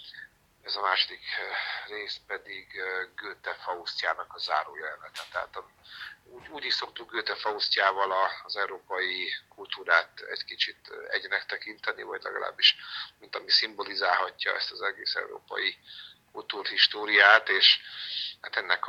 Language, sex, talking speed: Hungarian, male, 115 wpm